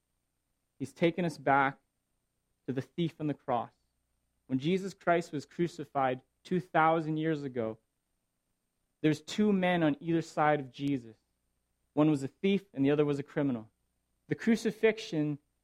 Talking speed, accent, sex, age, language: 145 wpm, American, male, 30-49, English